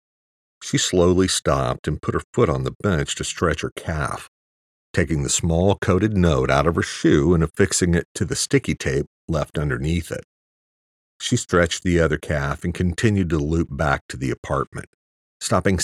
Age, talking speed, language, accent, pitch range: 50-69, 180 wpm, English, American, 70-90 Hz